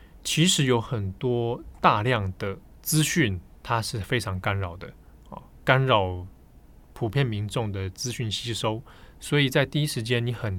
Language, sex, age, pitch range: Chinese, male, 20-39, 100-135 Hz